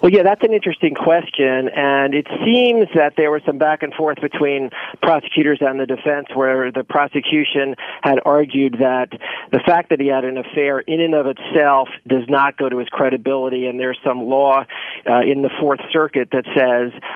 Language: English